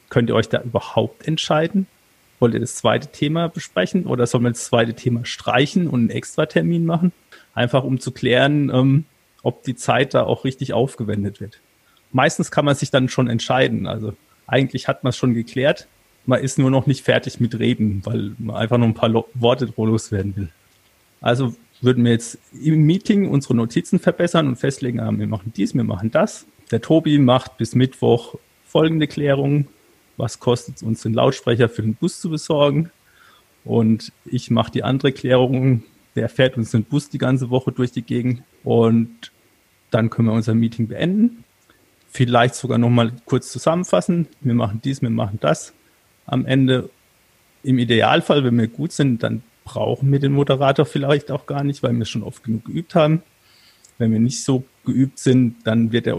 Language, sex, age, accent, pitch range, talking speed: German, male, 30-49, German, 115-140 Hz, 185 wpm